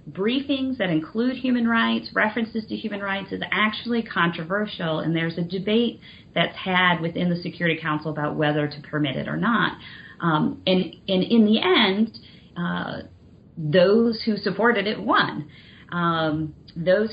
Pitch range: 160-210 Hz